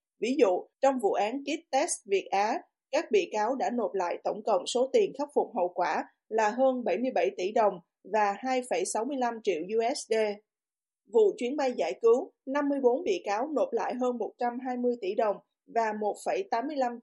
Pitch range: 225-295 Hz